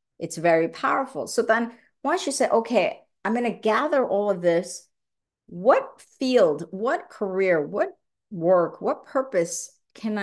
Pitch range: 180-230 Hz